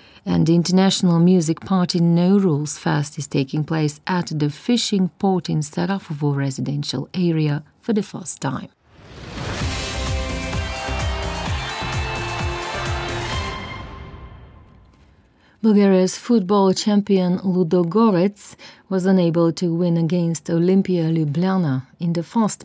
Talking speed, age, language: 100 wpm, 40-59, English